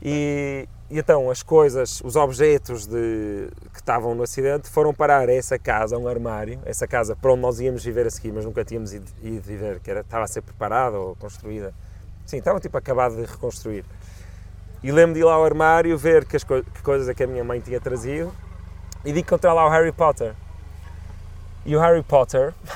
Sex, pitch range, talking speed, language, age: male, 105-150 Hz, 205 wpm, Portuguese, 30-49